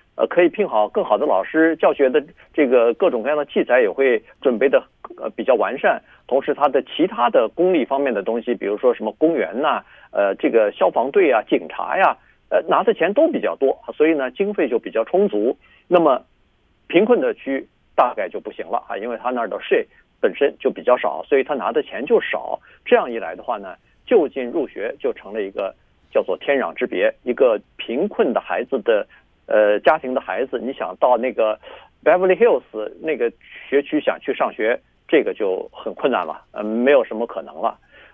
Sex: male